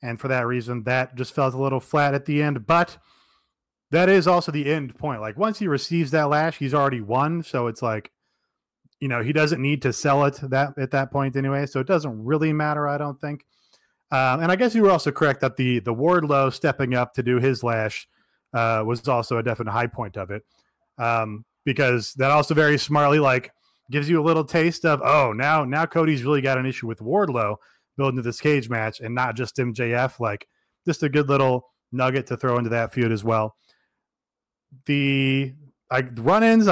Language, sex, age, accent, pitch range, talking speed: English, male, 30-49, American, 125-155 Hz, 210 wpm